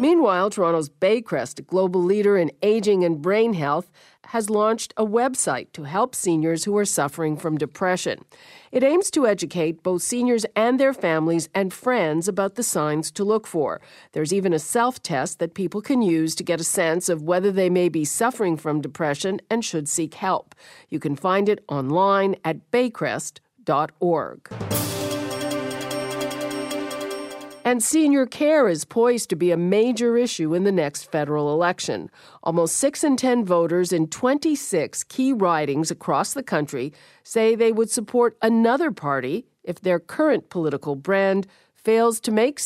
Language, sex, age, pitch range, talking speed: English, female, 50-69, 160-220 Hz, 160 wpm